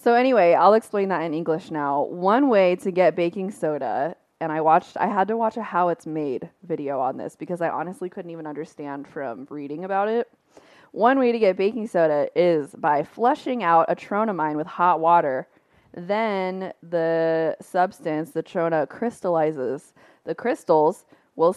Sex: female